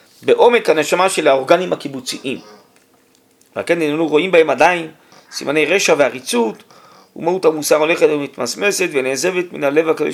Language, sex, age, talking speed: Hebrew, male, 40-59, 135 wpm